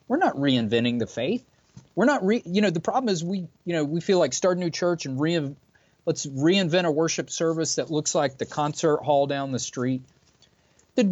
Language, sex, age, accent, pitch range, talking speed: English, male, 30-49, American, 130-175 Hz, 215 wpm